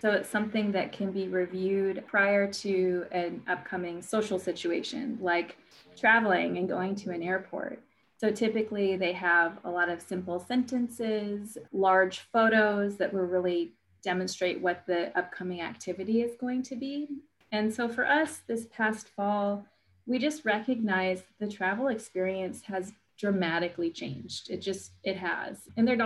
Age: 30-49